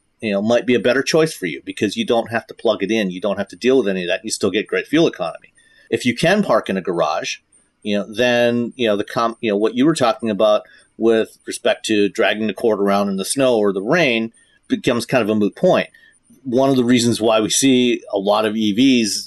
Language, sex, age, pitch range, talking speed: English, male, 40-59, 105-130 Hz, 260 wpm